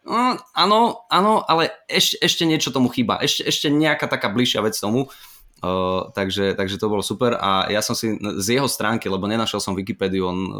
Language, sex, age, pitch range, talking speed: Slovak, male, 20-39, 100-125 Hz, 185 wpm